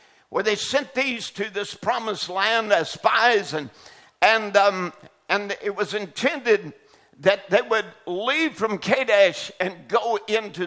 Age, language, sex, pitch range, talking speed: 60-79, English, male, 200-260 Hz, 145 wpm